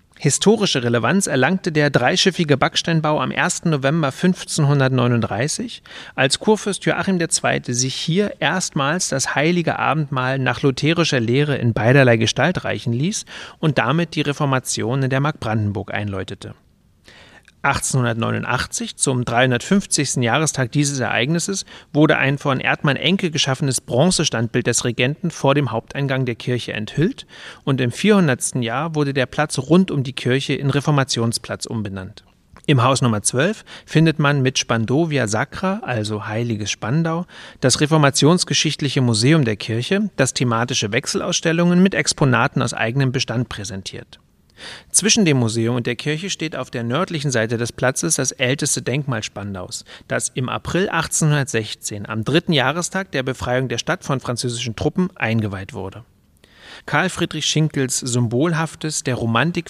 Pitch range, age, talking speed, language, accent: 120-160 Hz, 40-59, 135 wpm, German, German